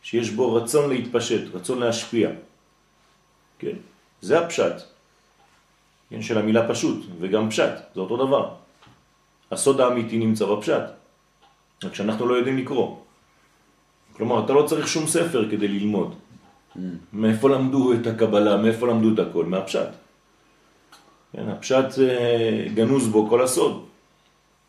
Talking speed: 120 wpm